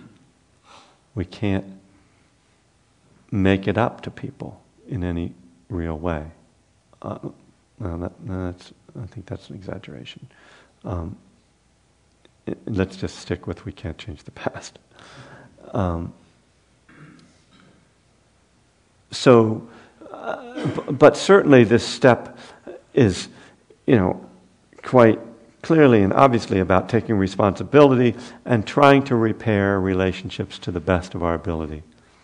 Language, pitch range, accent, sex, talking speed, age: English, 90-115 Hz, American, male, 100 wpm, 50-69